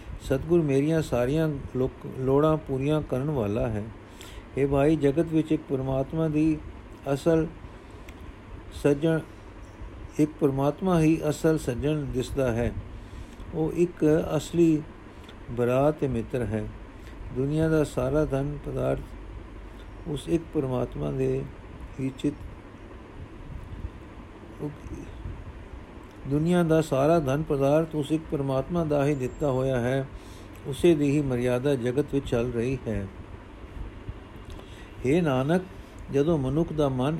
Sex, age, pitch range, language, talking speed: male, 50-69, 105-150 Hz, Punjabi, 115 wpm